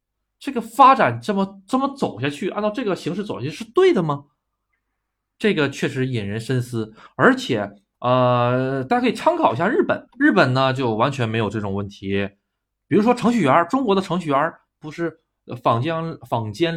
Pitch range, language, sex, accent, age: 115-175 Hz, Chinese, male, native, 20-39